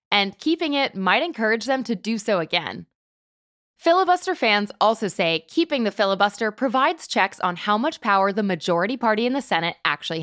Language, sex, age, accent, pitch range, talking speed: English, female, 20-39, American, 185-250 Hz, 175 wpm